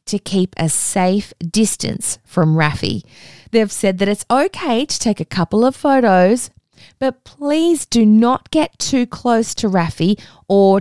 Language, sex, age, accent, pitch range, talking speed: English, female, 20-39, Australian, 170-245 Hz, 155 wpm